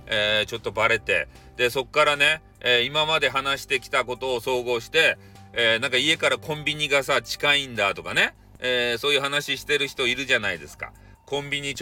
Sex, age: male, 40-59